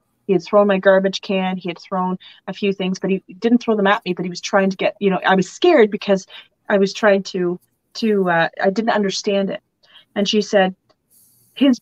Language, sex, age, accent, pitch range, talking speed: English, female, 30-49, American, 180-220 Hz, 230 wpm